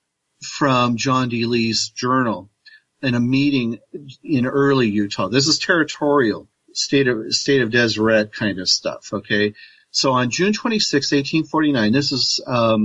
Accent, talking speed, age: American, 130 wpm, 40-59